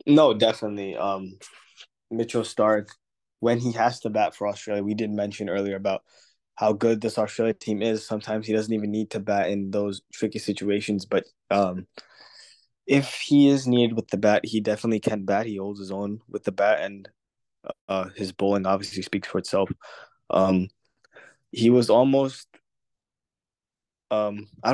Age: 20-39